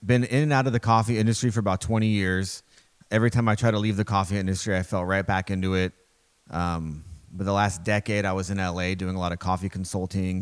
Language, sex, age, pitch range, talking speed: English, male, 30-49, 90-105 Hz, 240 wpm